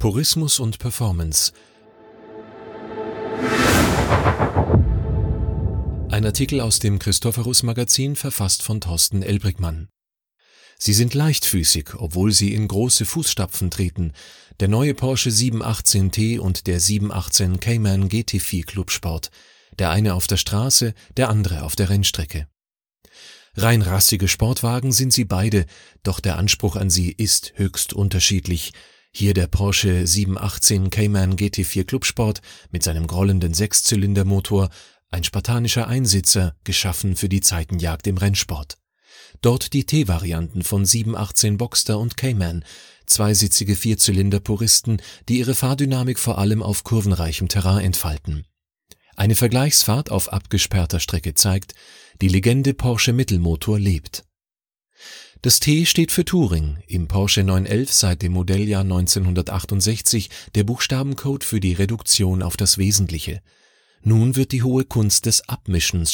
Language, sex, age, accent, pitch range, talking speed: German, male, 40-59, German, 90-115 Hz, 120 wpm